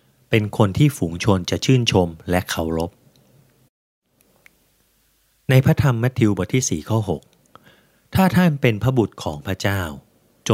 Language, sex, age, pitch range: Thai, male, 30-49, 90-115 Hz